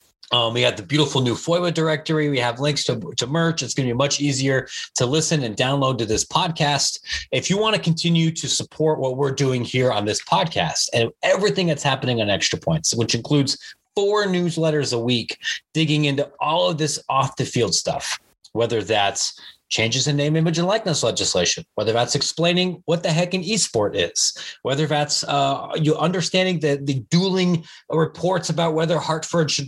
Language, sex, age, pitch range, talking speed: English, male, 30-49, 130-160 Hz, 190 wpm